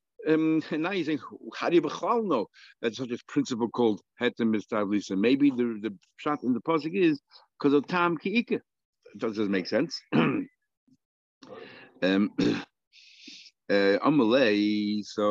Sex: male